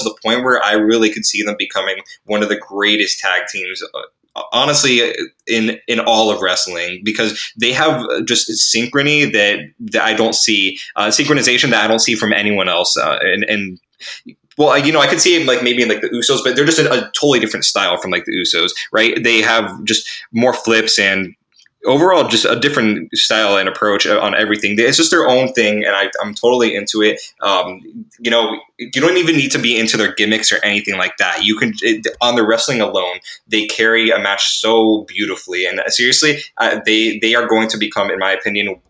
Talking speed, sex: 210 wpm, male